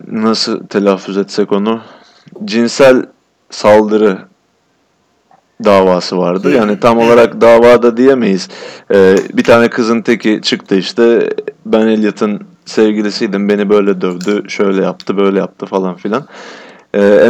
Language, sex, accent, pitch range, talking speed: Turkish, male, native, 105-140 Hz, 115 wpm